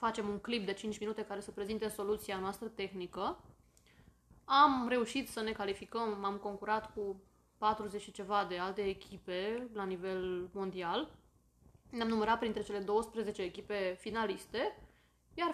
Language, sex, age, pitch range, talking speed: Romanian, female, 20-39, 200-245 Hz, 145 wpm